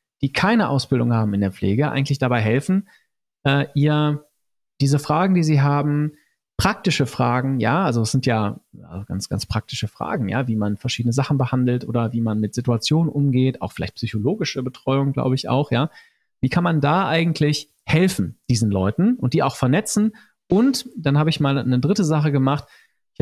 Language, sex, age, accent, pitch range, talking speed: German, male, 40-59, German, 120-150 Hz, 185 wpm